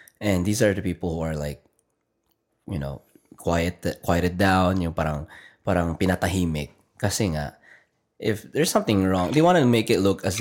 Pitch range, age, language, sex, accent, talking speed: 85-110 Hz, 20-39, Filipino, male, native, 175 wpm